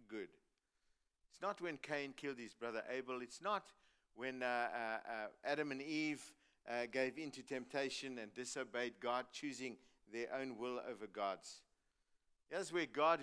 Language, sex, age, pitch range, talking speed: English, male, 50-69, 125-160 Hz, 155 wpm